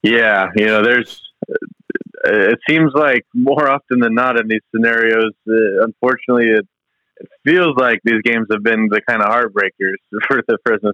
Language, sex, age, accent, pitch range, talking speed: English, male, 30-49, American, 100-120 Hz, 170 wpm